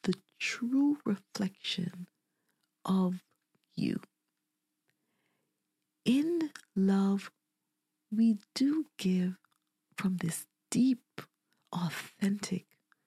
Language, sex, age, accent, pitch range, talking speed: English, female, 40-59, American, 185-230 Hz, 60 wpm